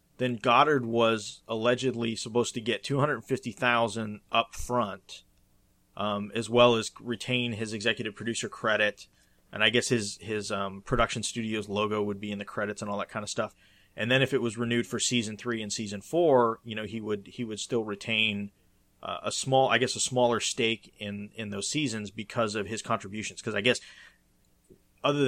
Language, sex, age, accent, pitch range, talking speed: English, male, 30-49, American, 105-120 Hz, 190 wpm